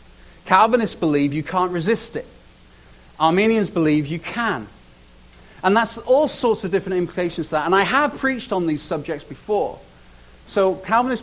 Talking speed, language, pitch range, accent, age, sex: 155 wpm, English, 140-210 Hz, British, 40-59, male